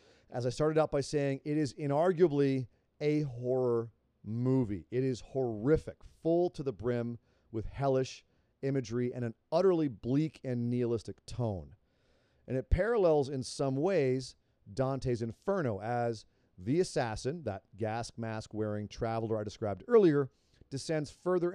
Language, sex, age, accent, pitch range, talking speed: English, male, 40-59, American, 115-150 Hz, 140 wpm